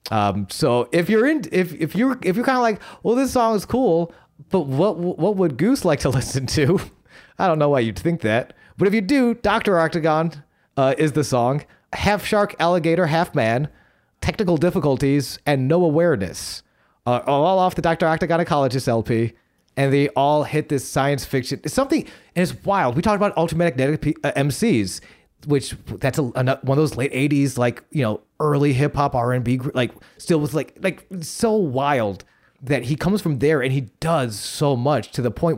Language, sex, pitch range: English, male, 125-165 Hz